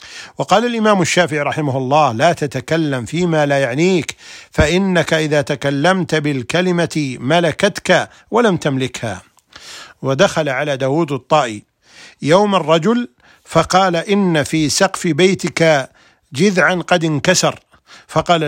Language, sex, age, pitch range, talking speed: Arabic, male, 50-69, 140-180 Hz, 105 wpm